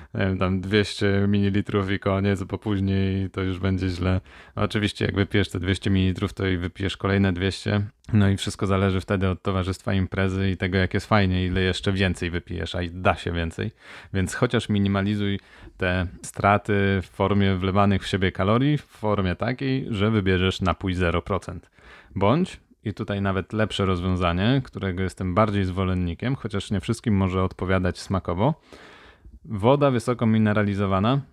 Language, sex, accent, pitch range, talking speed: Polish, male, native, 95-105 Hz, 155 wpm